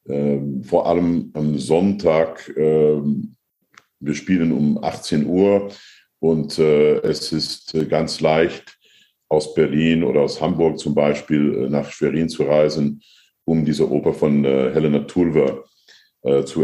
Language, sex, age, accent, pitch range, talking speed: German, male, 50-69, German, 70-80 Hz, 140 wpm